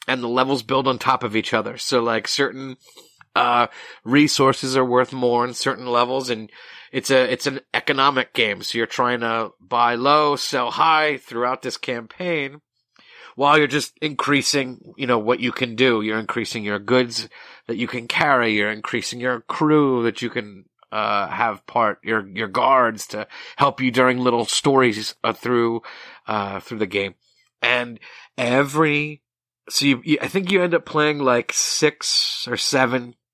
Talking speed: 170 wpm